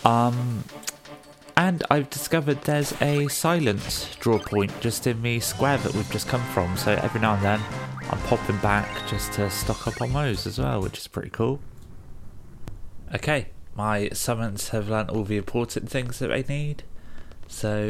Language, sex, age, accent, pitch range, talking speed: English, male, 20-39, British, 90-120 Hz, 170 wpm